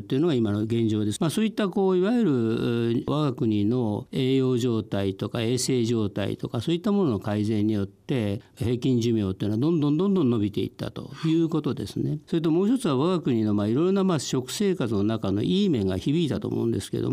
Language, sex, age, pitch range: Japanese, male, 50-69, 110-150 Hz